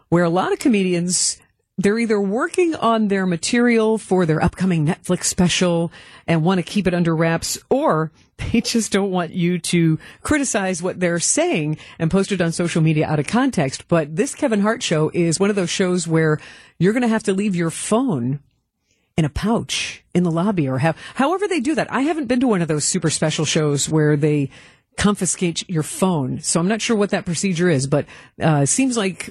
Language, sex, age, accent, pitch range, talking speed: English, female, 50-69, American, 160-230 Hz, 205 wpm